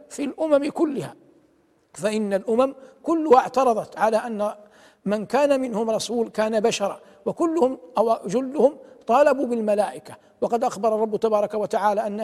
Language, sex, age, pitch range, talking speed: Arabic, male, 60-79, 215-260 Hz, 125 wpm